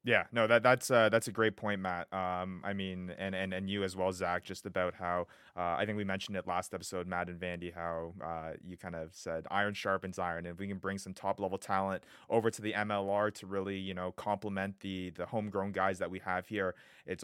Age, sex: 20-39, male